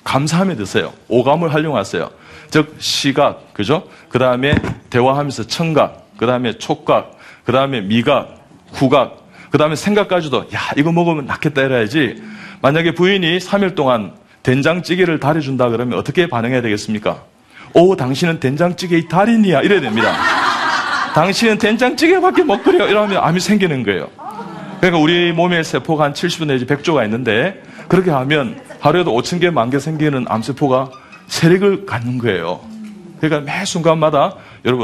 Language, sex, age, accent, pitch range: Korean, male, 40-59, native, 135-200 Hz